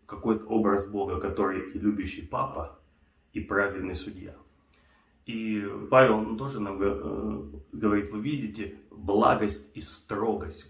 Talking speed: 110 wpm